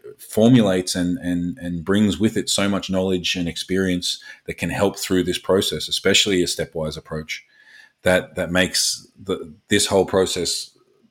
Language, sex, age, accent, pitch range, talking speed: English, male, 30-49, Australian, 85-95 Hz, 155 wpm